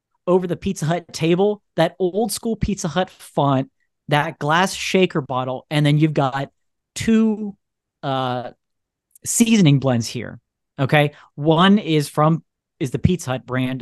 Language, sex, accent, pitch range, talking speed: English, male, American, 125-165 Hz, 145 wpm